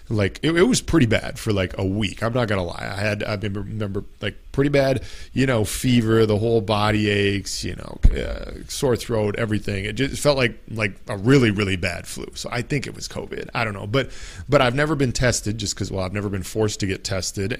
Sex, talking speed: male, 235 wpm